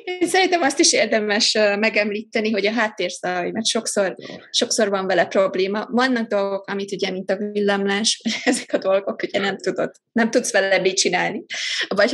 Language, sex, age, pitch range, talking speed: Hungarian, female, 20-39, 190-245 Hz, 175 wpm